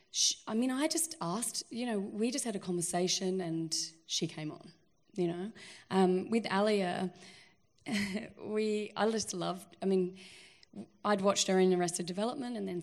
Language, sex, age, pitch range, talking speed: English, female, 20-39, 180-220 Hz, 170 wpm